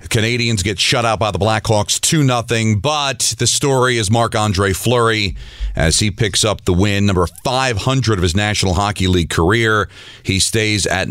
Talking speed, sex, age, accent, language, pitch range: 170 wpm, male, 40-59, American, English, 95-120 Hz